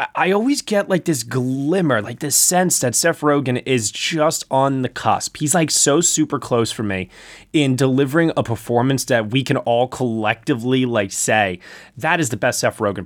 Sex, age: male, 20-39